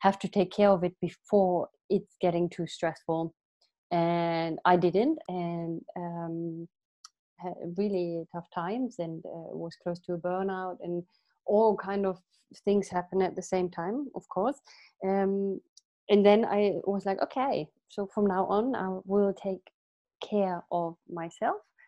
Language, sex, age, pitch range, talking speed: English, female, 30-49, 170-195 Hz, 150 wpm